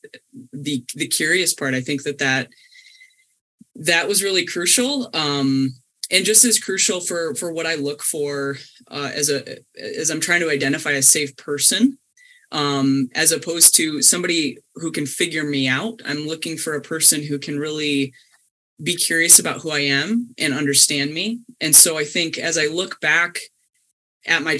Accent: American